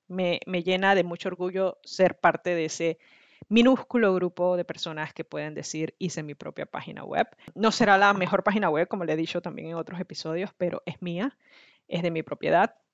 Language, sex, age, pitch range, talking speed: Spanish, female, 20-39, 165-200 Hz, 200 wpm